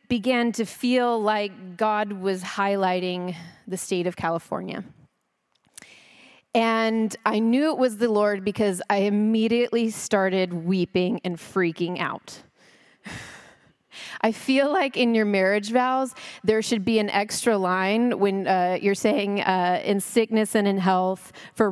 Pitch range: 190-235 Hz